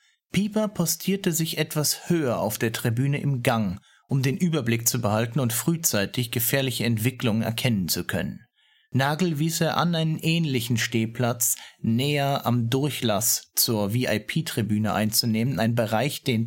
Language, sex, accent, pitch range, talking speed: German, male, German, 115-155 Hz, 140 wpm